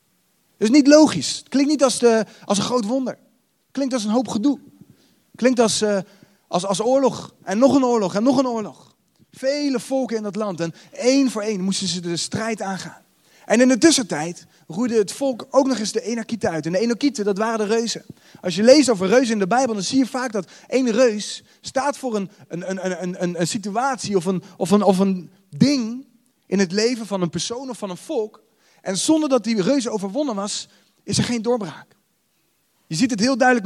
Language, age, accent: Dutch, 30-49, Dutch